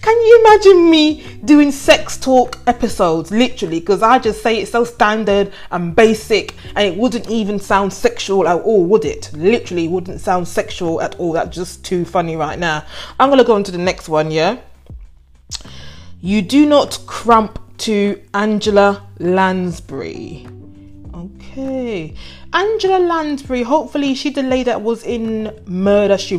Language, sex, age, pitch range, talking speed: English, female, 20-39, 170-245 Hz, 150 wpm